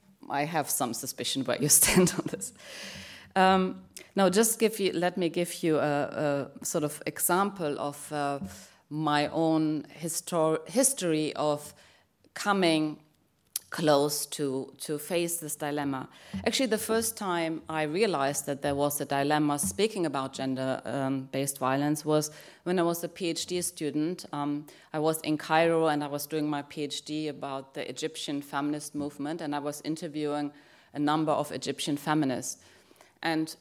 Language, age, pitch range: French, 30-49, 145-165 Hz